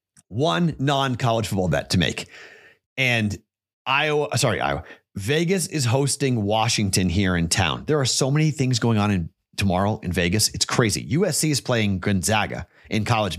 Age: 30-49